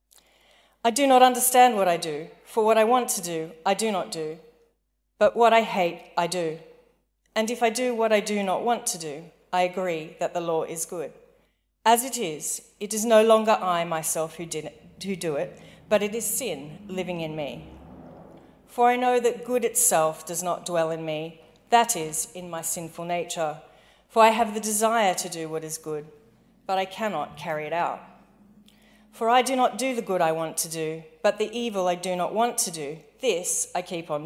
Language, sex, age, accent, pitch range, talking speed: English, female, 40-59, Australian, 165-230 Hz, 205 wpm